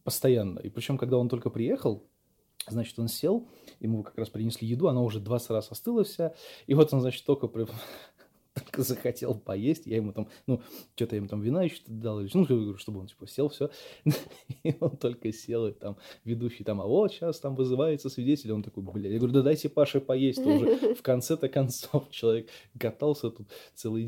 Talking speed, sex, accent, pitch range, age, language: 200 wpm, male, native, 105-135 Hz, 20-39, Russian